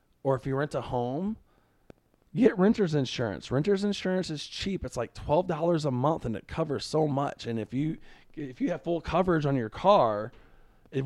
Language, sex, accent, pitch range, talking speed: English, male, American, 115-155 Hz, 195 wpm